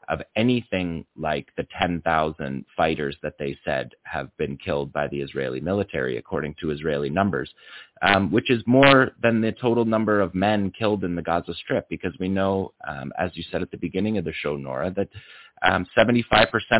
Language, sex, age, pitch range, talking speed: English, male, 30-49, 80-105 Hz, 180 wpm